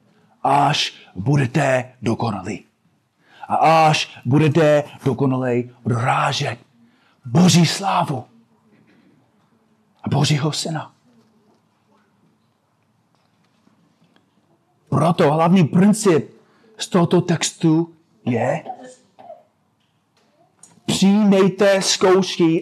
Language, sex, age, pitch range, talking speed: Czech, male, 40-59, 130-165 Hz, 60 wpm